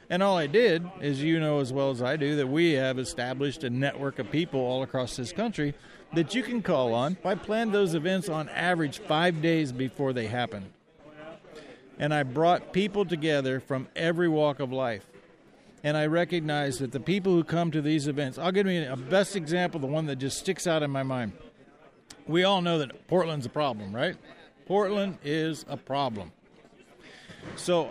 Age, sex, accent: 50-69, male, American